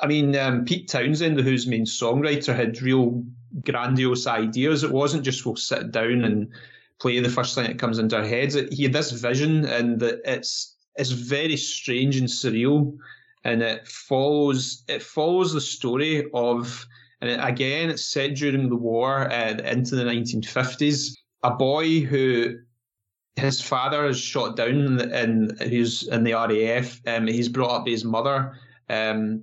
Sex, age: male, 20-39